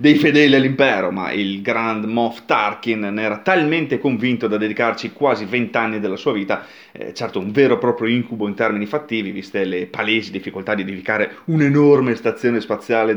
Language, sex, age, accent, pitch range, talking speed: Italian, male, 30-49, native, 105-130 Hz, 180 wpm